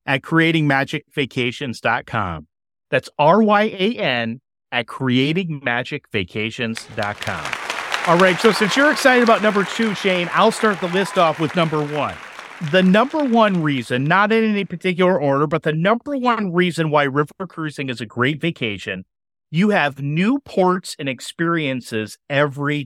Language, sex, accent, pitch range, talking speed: English, male, American, 130-185 Hz, 135 wpm